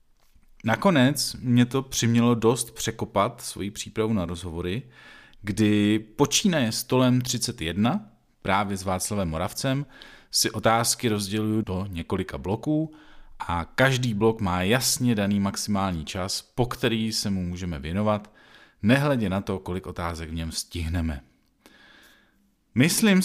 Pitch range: 90-120 Hz